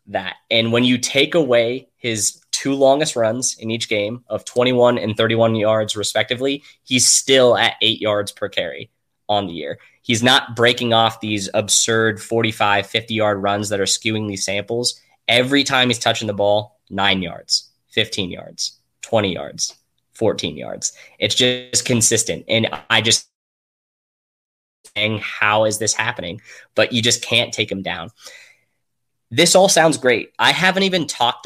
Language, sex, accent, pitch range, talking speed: English, male, American, 110-135 Hz, 160 wpm